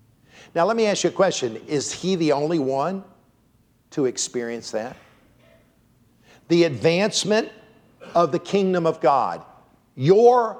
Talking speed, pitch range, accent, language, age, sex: 130 wpm, 165-220 Hz, American, English, 50-69, male